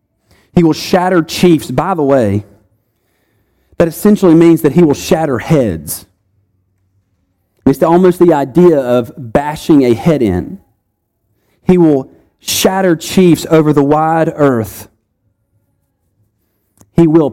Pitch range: 105-155 Hz